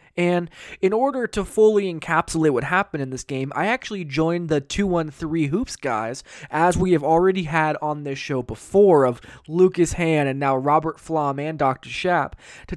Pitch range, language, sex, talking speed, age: 135-170 Hz, English, male, 190 wpm, 20-39